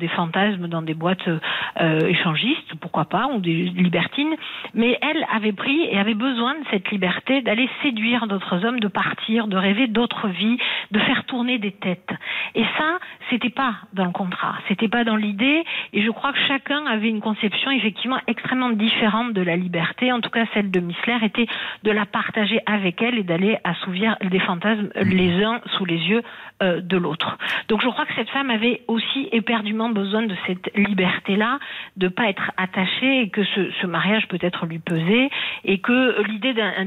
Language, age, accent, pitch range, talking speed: French, 50-69, French, 185-235 Hz, 190 wpm